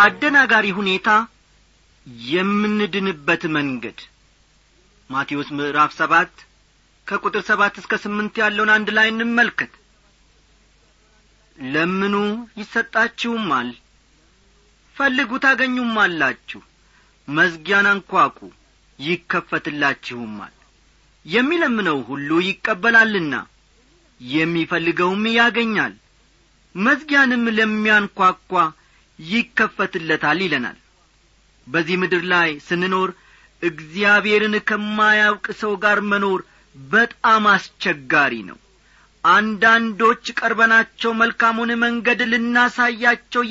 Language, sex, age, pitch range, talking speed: Amharic, male, 40-59, 175-235 Hz, 70 wpm